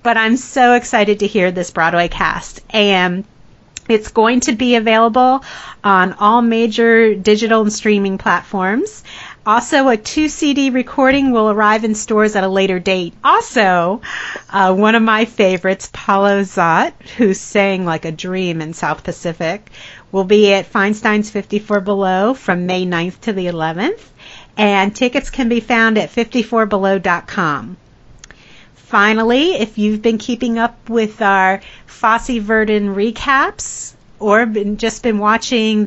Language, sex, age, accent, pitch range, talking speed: English, female, 40-59, American, 190-240 Hz, 140 wpm